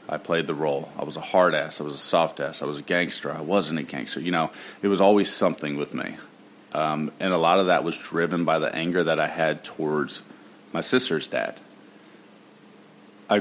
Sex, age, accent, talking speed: male, 40-59, American, 210 wpm